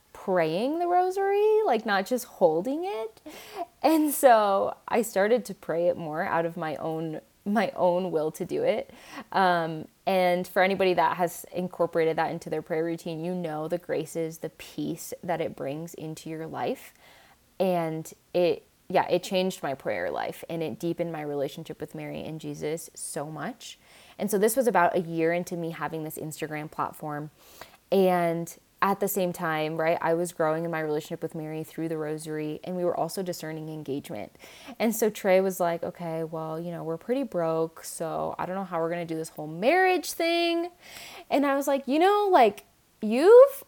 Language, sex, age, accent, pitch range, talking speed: English, female, 20-39, American, 160-215 Hz, 190 wpm